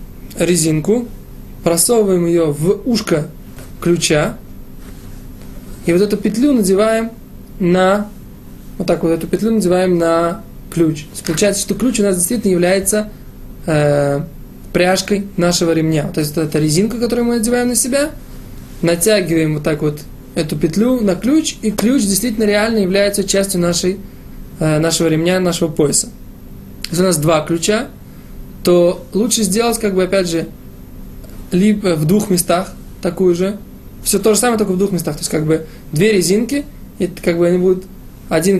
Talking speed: 155 wpm